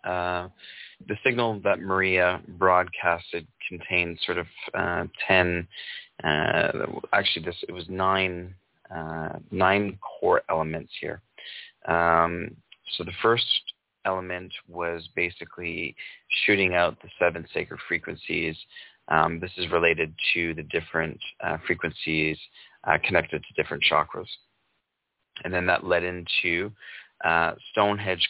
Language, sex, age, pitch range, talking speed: English, male, 20-39, 85-95 Hz, 120 wpm